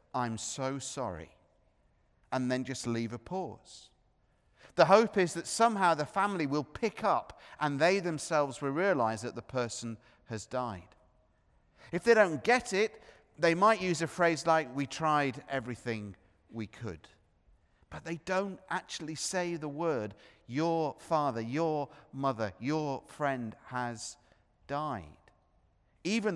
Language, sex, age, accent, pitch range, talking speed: English, male, 40-59, British, 110-165 Hz, 140 wpm